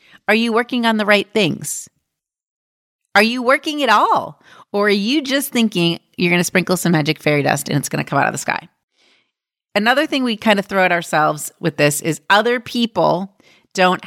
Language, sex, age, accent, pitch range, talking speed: English, female, 30-49, American, 160-210 Hz, 205 wpm